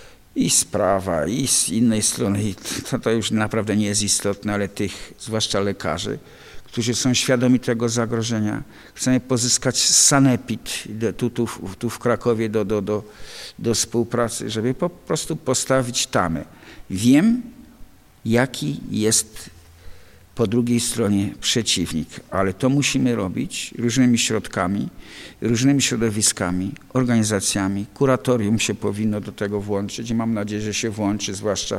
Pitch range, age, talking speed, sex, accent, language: 100-120 Hz, 50-69, 130 wpm, male, native, Polish